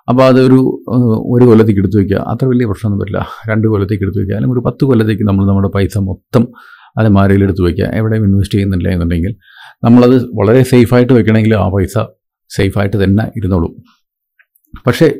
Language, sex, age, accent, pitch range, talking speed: Malayalam, male, 50-69, native, 100-125 Hz, 160 wpm